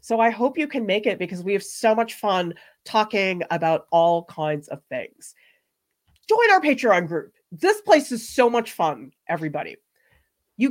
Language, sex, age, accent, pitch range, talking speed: English, female, 30-49, American, 175-255 Hz, 175 wpm